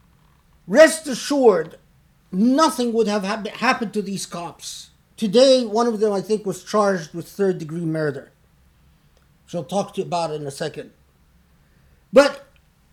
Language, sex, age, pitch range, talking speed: English, male, 50-69, 195-255 Hz, 145 wpm